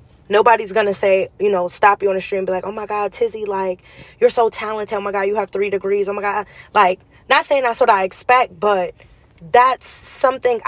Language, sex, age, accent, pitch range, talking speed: English, female, 20-39, American, 195-240 Hz, 230 wpm